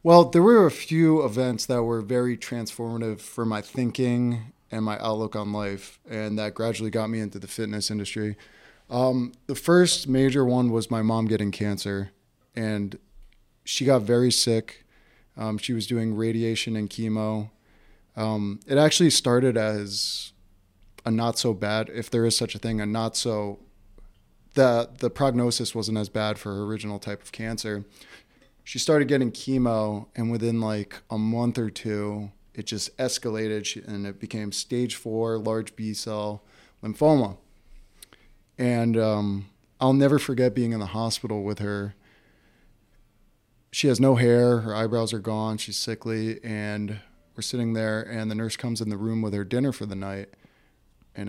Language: English